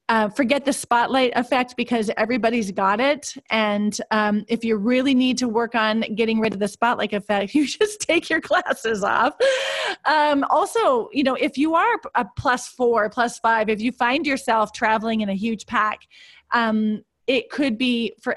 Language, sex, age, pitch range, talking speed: English, female, 30-49, 210-245 Hz, 185 wpm